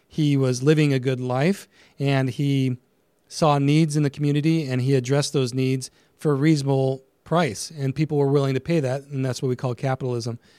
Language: English